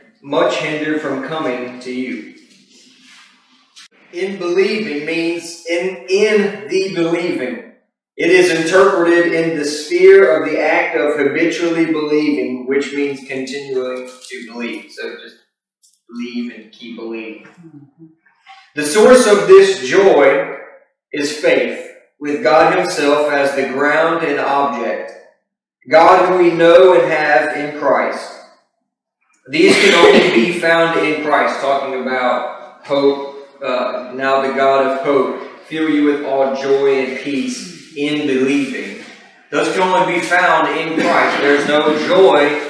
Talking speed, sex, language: 130 wpm, male, English